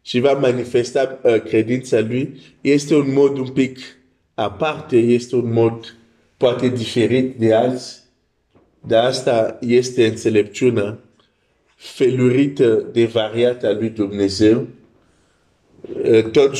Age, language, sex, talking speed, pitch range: 50-69, Romanian, male, 115 wpm, 105-125 Hz